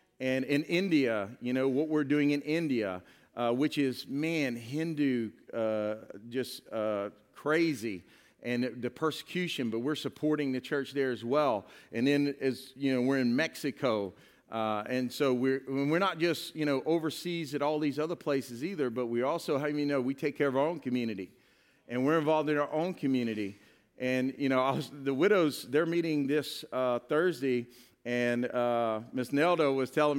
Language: English